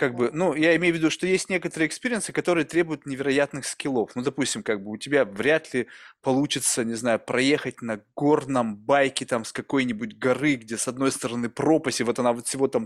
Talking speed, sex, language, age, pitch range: 210 wpm, male, Russian, 20-39, 130-170 Hz